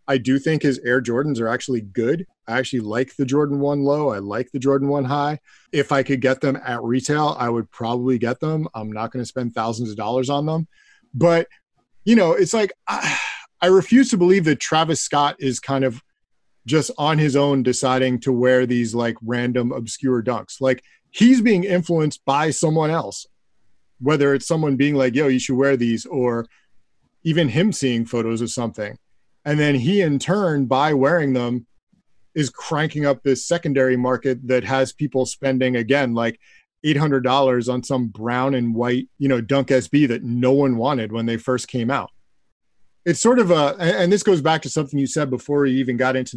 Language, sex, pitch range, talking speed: English, male, 125-155 Hz, 195 wpm